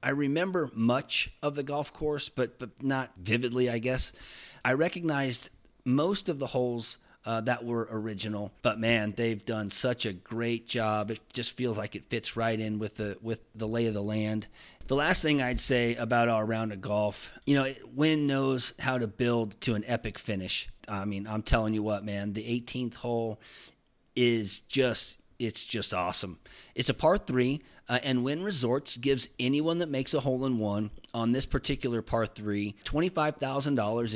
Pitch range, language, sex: 105-125 Hz, English, male